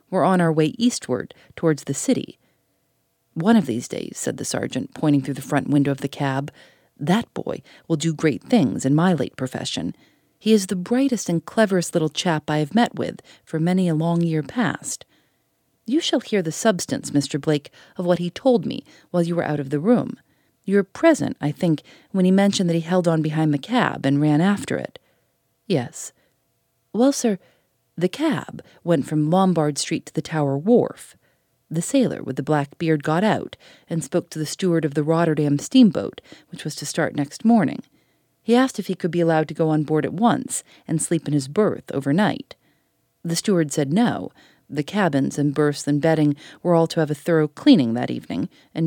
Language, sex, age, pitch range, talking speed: English, female, 40-59, 150-200 Hz, 200 wpm